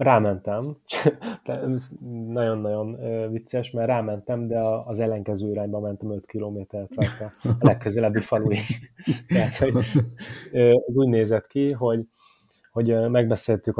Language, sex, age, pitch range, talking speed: Hungarian, male, 20-39, 110-120 Hz, 95 wpm